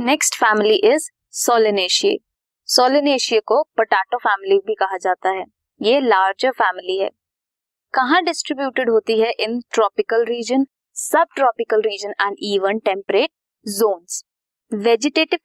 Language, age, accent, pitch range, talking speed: Hindi, 20-39, native, 215-305 Hz, 120 wpm